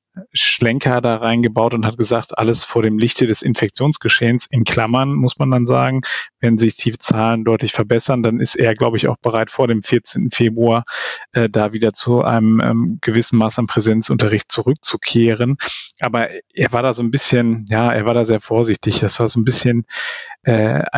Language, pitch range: German, 110-125 Hz